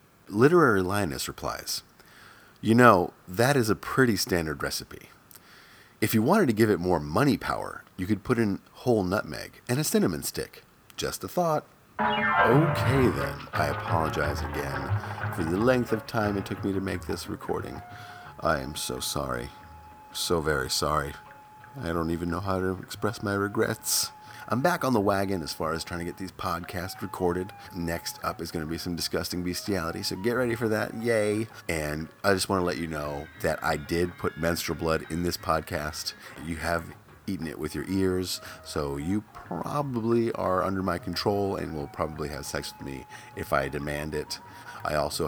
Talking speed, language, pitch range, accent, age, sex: 185 wpm, English, 80-110 Hz, American, 40-59, male